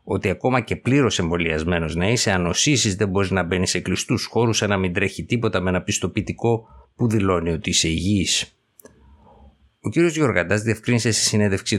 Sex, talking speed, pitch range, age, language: male, 175 wpm, 90-115 Hz, 50-69, Greek